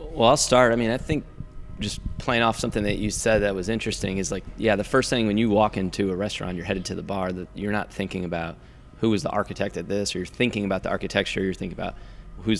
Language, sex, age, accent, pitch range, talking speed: English, male, 20-39, American, 95-110 Hz, 260 wpm